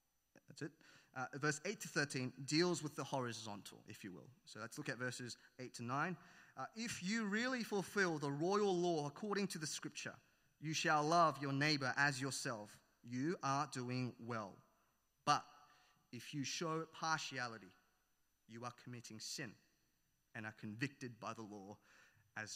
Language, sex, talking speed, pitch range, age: English, male, 155 wpm, 125-160 Hz, 30-49